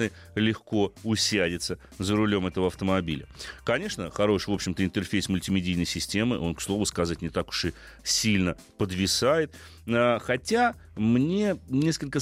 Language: Russian